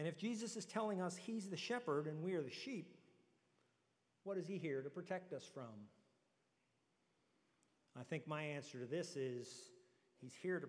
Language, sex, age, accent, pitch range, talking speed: English, male, 50-69, American, 135-190 Hz, 180 wpm